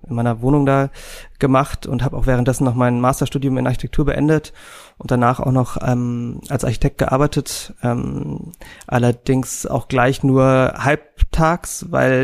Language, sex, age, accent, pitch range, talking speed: German, male, 30-49, German, 120-135 Hz, 145 wpm